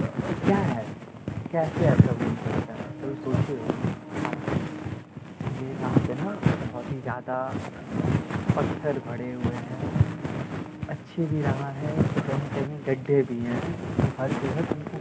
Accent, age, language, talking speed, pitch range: native, 30-49, Hindi, 130 wpm, 130-165 Hz